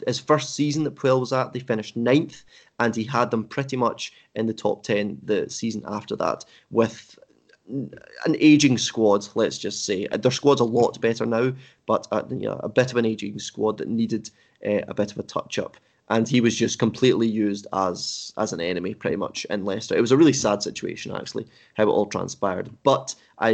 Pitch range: 110-130 Hz